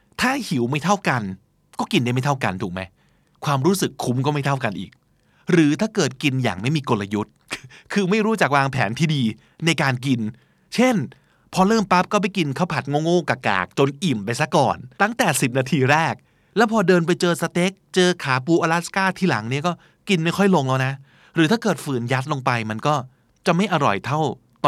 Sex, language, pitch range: male, Thai, 120-175 Hz